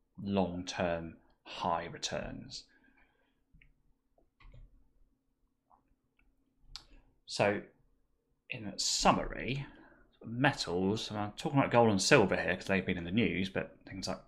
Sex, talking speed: male, 100 wpm